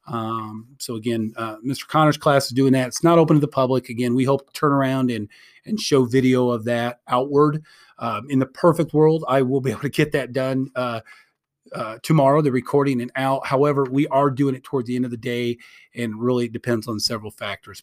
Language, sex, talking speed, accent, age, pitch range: English, male, 220 wpm, American, 30-49, 120-155 Hz